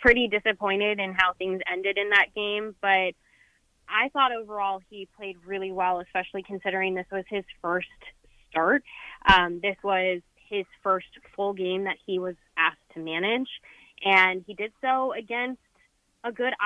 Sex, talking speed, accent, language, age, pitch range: female, 160 wpm, American, English, 20-39, 190-240 Hz